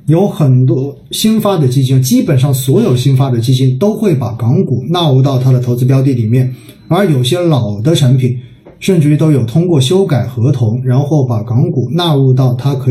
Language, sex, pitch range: Chinese, male, 130-165 Hz